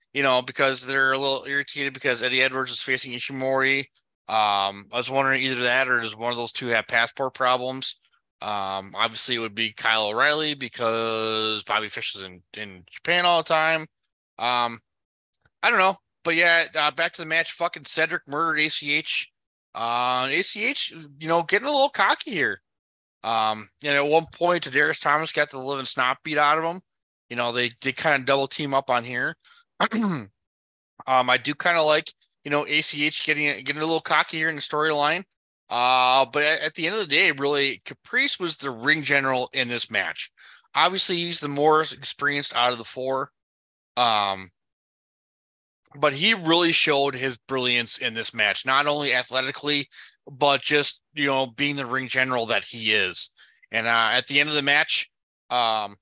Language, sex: English, male